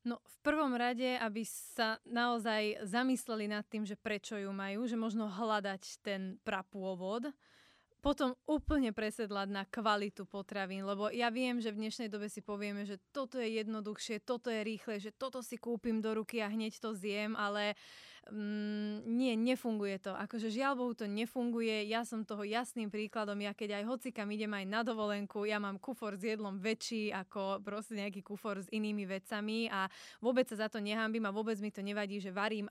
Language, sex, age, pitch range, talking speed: Slovak, female, 20-39, 205-230 Hz, 185 wpm